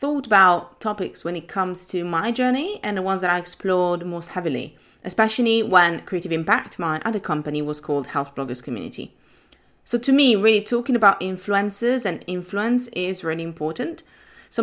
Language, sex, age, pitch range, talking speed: English, female, 30-49, 165-220 Hz, 170 wpm